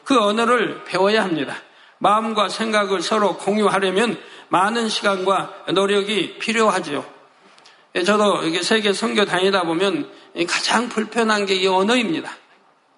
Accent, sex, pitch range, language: native, male, 185-235 Hz, Korean